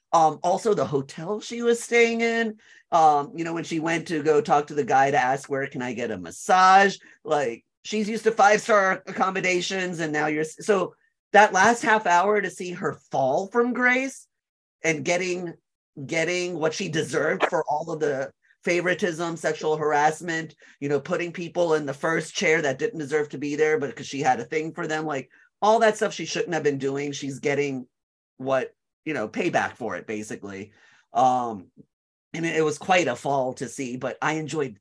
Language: English